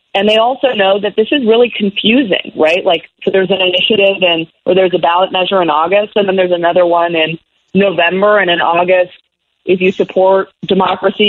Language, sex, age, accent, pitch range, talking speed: English, female, 30-49, American, 160-200 Hz, 195 wpm